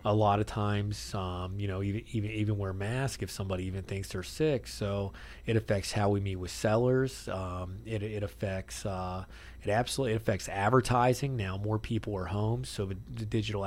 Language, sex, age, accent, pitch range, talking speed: English, male, 30-49, American, 100-120 Hz, 195 wpm